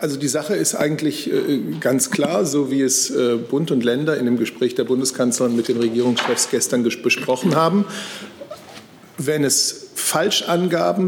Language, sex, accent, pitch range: German, male, German, 135-165 Hz